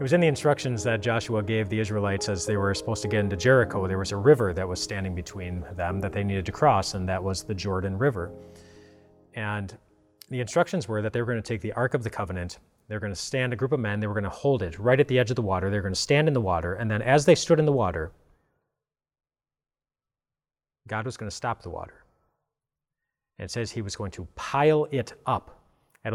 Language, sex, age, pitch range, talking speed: English, male, 30-49, 100-135 Hz, 250 wpm